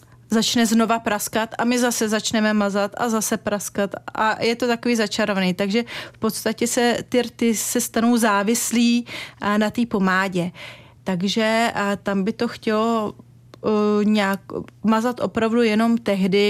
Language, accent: Czech, native